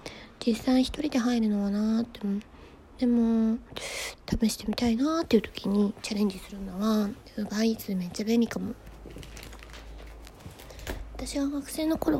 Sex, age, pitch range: female, 20-39, 210-265 Hz